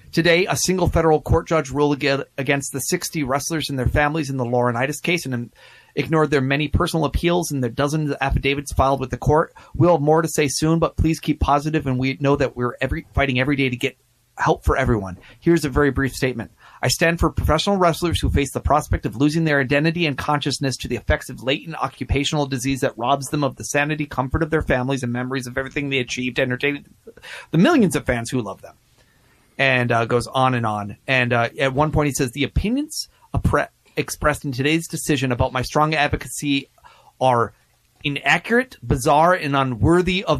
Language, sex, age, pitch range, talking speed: English, male, 30-49, 125-155 Hz, 205 wpm